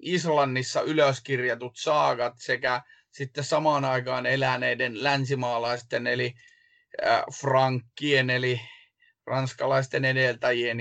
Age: 30-49